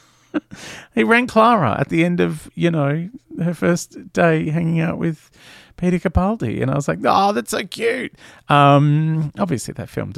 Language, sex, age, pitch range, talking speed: English, male, 30-49, 95-150 Hz, 170 wpm